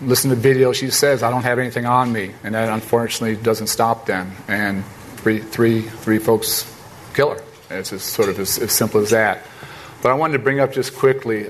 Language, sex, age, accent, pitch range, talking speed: English, male, 40-59, American, 115-130 Hz, 220 wpm